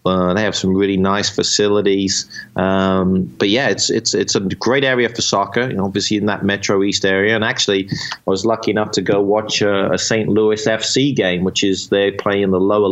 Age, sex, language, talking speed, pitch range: 30-49, male, English, 215 wpm, 95-110 Hz